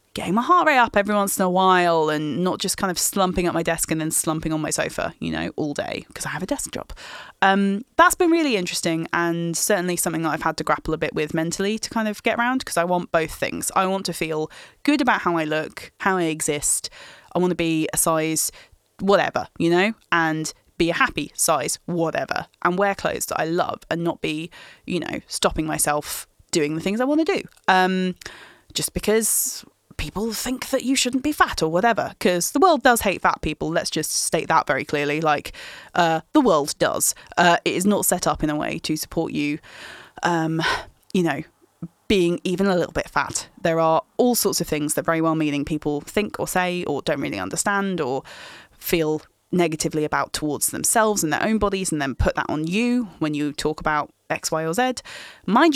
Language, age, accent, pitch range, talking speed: English, 20-39, British, 160-205 Hz, 220 wpm